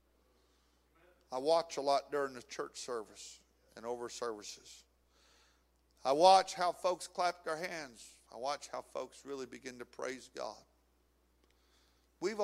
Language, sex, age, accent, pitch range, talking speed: English, male, 50-69, American, 110-140 Hz, 135 wpm